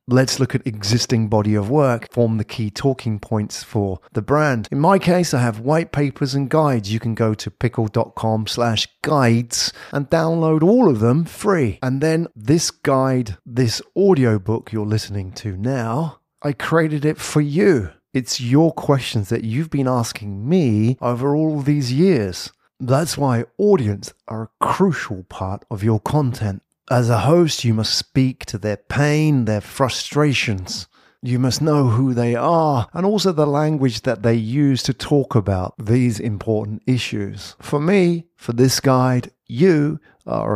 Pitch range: 110-145 Hz